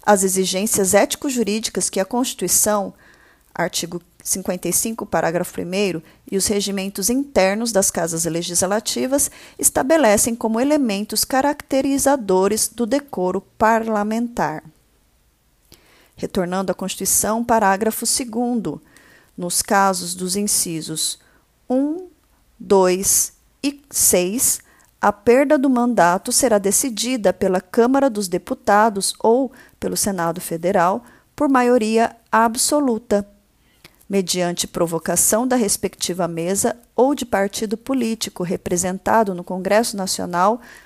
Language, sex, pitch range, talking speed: Portuguese, female, 185-235 Hz, 100 wpm